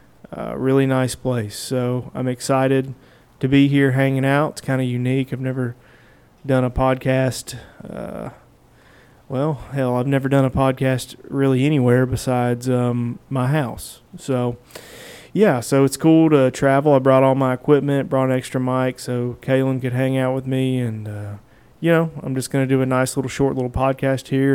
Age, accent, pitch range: 30-49, American, 125-135 Hz